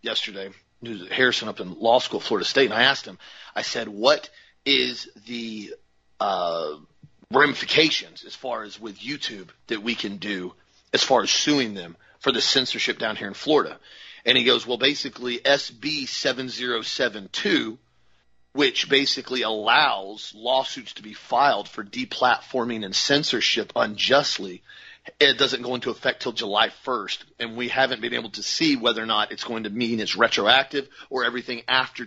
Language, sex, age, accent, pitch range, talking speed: English, male, 40-59, American, 115-160 Hz, 160 wpm